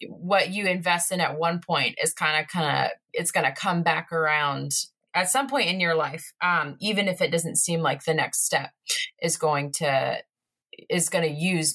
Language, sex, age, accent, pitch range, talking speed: English, female, 20-39, American, 165-210 Hz, 210 wpm